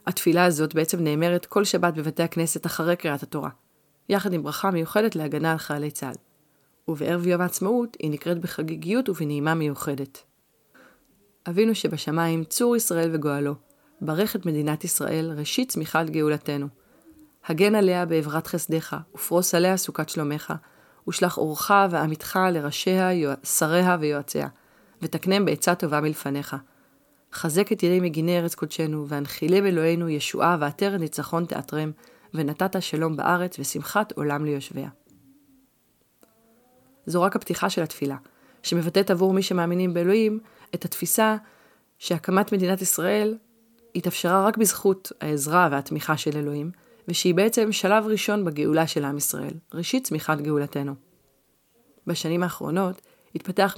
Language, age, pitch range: Hebrew, 30-49, 155-190 Hz